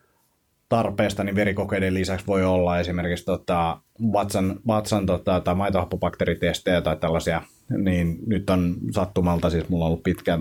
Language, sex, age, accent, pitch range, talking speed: Finnish, male, 30-49, native, 90-105 Hz, 140 wpm